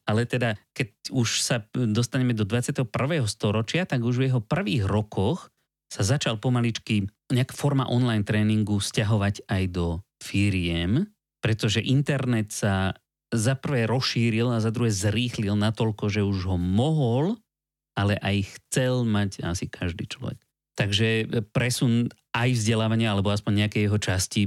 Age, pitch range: 30-49, 100-125 Hz